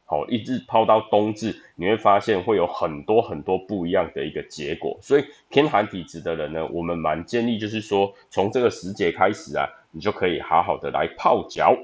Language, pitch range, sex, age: Chinese, 85-120 Hz, male, 20-39